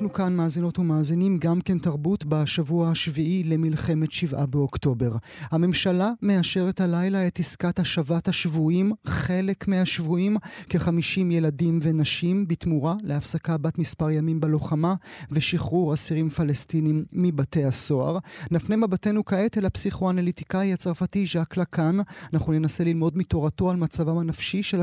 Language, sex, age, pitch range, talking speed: Hebrew, male, 30-49, 155-180 Hz, 125 wpm